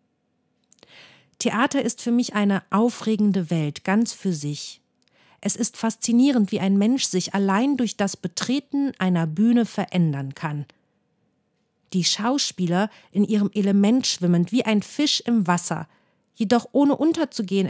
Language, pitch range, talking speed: German, 190-245 Hz, 130 wpm